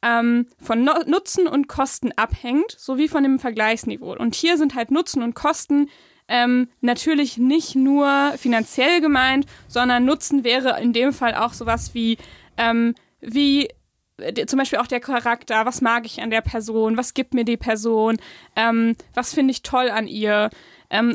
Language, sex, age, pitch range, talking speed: German, female, 20-39, 235-280 Hz, 160 wpm